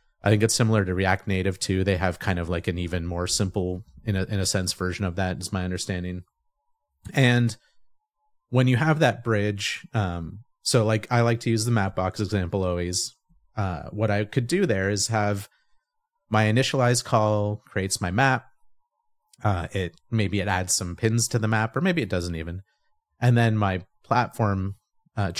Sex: male